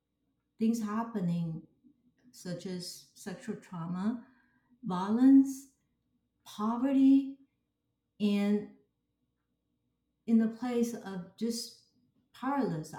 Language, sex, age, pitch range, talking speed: English, female, 50-69, 180-225 Hz, 70 wpm